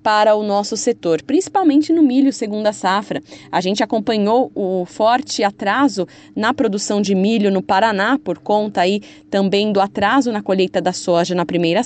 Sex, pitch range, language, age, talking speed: female, 195-255 Hz, Portuguese, 20-39, 165 wpm